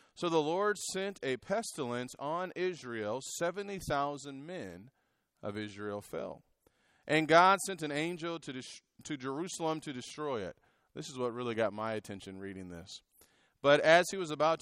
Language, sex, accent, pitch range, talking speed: English, male, American, 130-185 Hz, 160 wpm